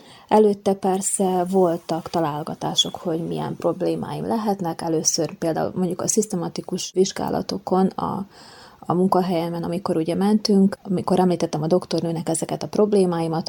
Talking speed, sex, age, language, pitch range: 120 wpm, female, 20-39, Hungarian, 170-210 Hz